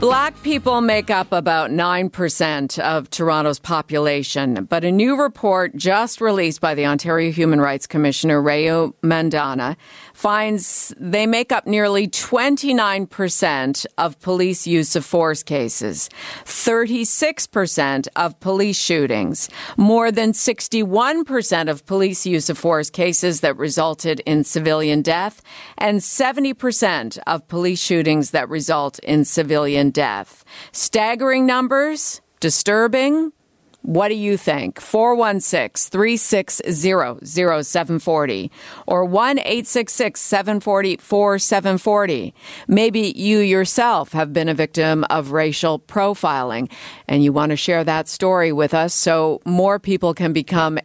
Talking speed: 115 wpm